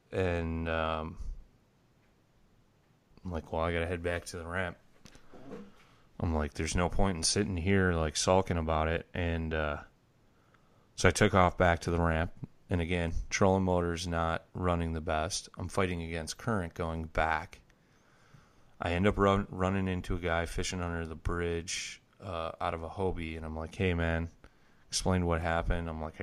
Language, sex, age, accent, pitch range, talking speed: English, male, 30-49, American, 80-95 Hz, 175 wpm